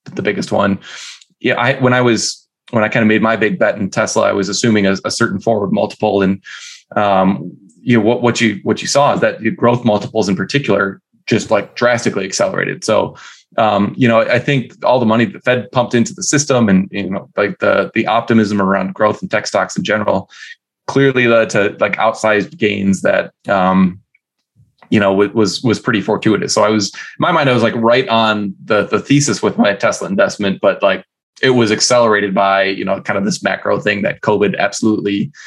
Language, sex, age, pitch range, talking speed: English, male, 20-39, 100-120 Hz, 210 wpm